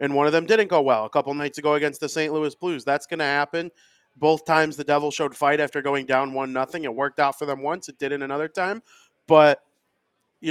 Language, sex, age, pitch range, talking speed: English, male, 30-49, 145-175 Hz, 250 wpm